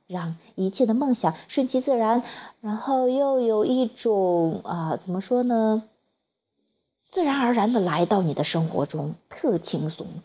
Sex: female